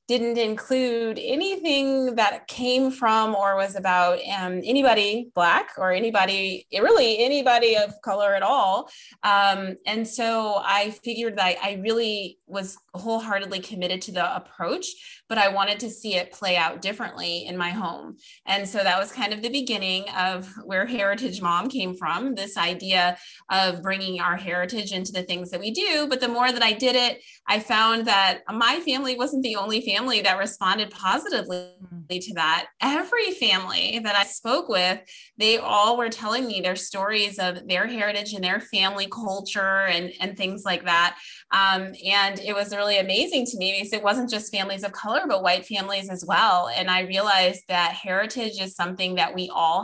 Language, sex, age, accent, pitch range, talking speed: English, female, 20-39, American, 185-225 Hz, 180 wpm